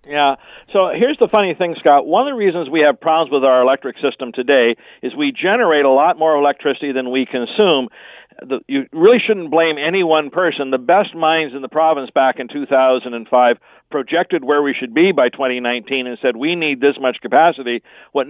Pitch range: 130-175 Hz